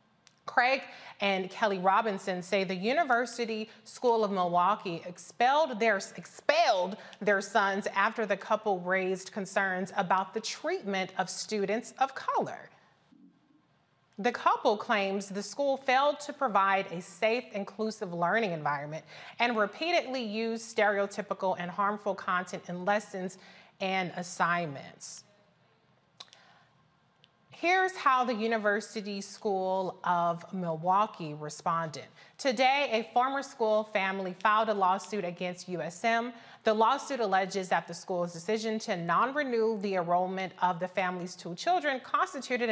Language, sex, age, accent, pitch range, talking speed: English, female, 30-49, American, 185-225 Hz, 120 wpm